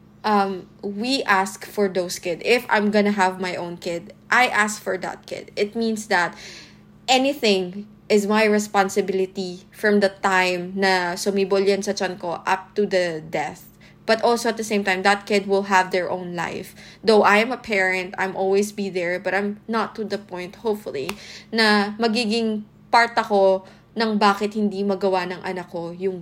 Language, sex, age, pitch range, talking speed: Filipino, female, 20-39, 185-210 Hz, 180 wpm